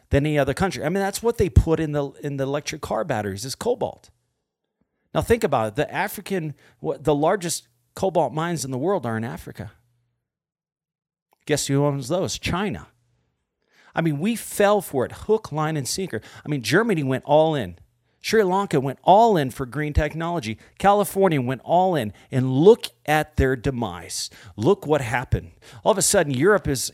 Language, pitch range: English, 120-170 Hz